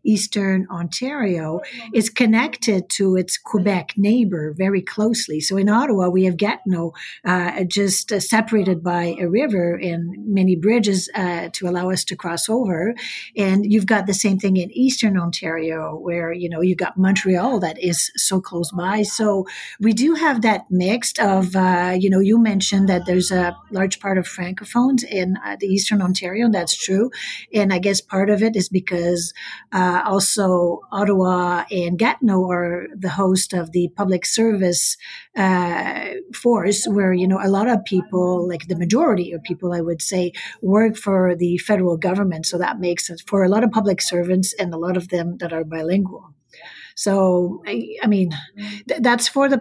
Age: 50-69